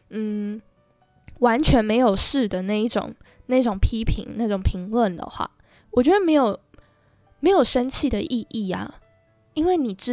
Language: Chinese